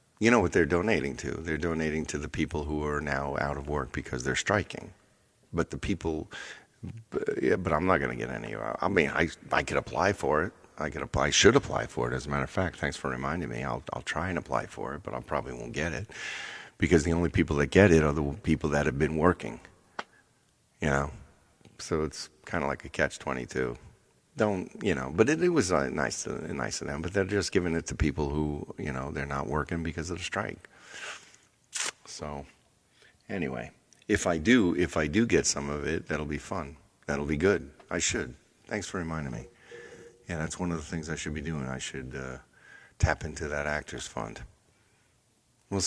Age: 50-69